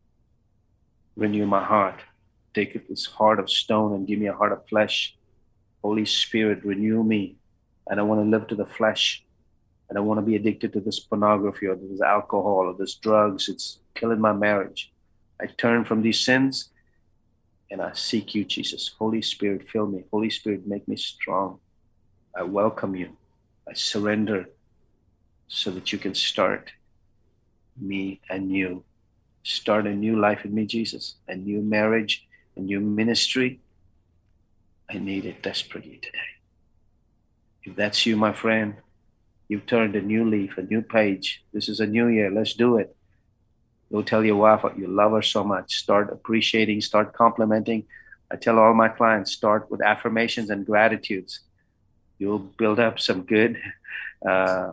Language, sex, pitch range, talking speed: English, male, 100-110 Hz, 160 wpm